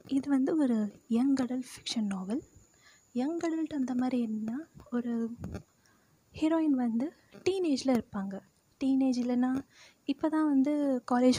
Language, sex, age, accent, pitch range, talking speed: Tamil, female, 20-39, native, 225-270 Hz, 120 wpm